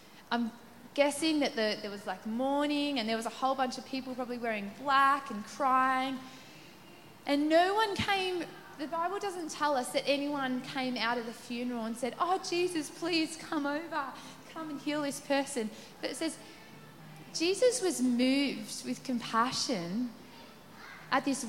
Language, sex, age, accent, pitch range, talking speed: English, female, 20-39, Australian, 245-330 Hz, 160 wpm